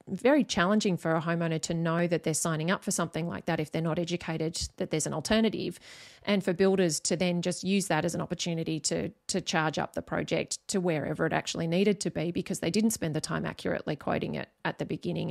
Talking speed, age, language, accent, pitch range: 230 wpm, 30-49, English, Australian, 160-185 Hz